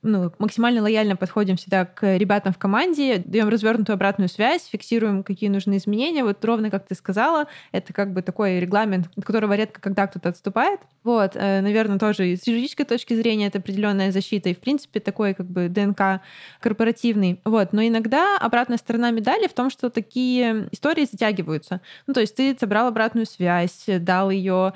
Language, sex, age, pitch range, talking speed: Russian, female, 20-39, 195-235 Hz, 175 wpm